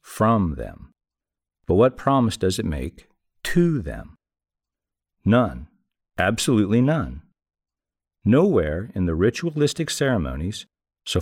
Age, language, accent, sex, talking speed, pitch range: 50-69, English, American, male, 100 wpm, 90-135 Hz